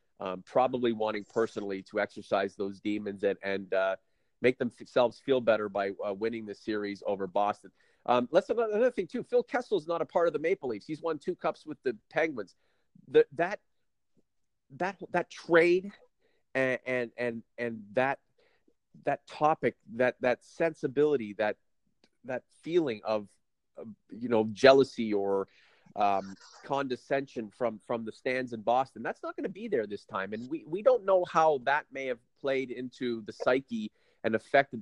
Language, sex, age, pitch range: English, male, 40-59, 110-160 Hz